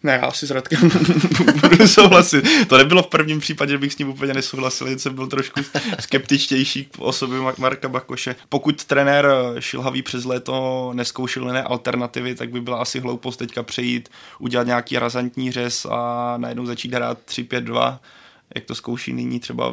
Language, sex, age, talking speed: Czech, male, 20-39, 165 wpm